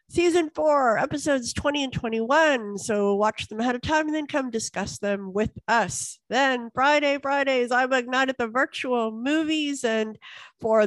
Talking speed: 160 wpm